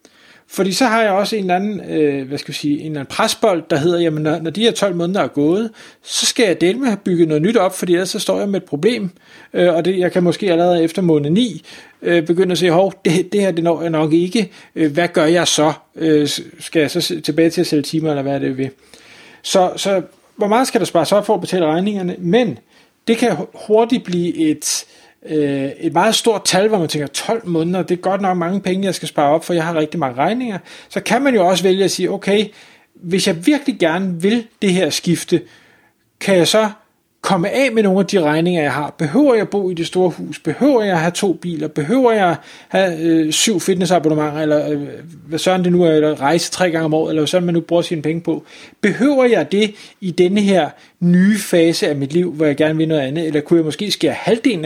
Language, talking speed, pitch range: Danish, 235 wpm, 155-195 Hz